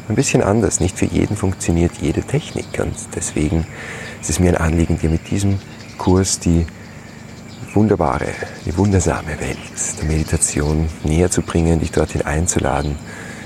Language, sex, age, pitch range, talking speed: German, male, 40-59, 80-105 Hz, 145 wpm